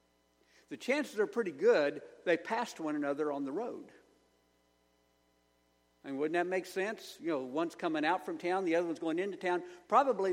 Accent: American